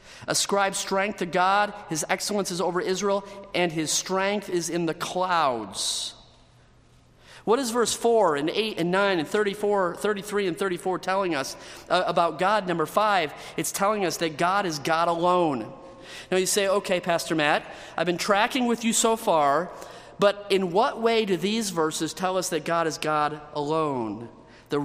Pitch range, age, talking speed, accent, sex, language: 155-205 Hz, 40-59, 170 wpm, American, male, English